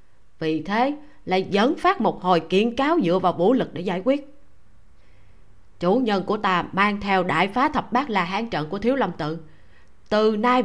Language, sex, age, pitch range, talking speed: Vietnamese, female, 20-39, 175-245 Hz, 195 wpm